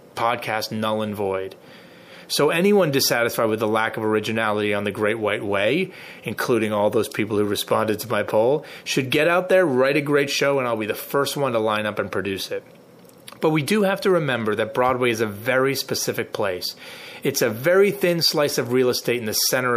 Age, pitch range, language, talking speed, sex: 30-49, 110-160 Hz, English, 215 wpm, male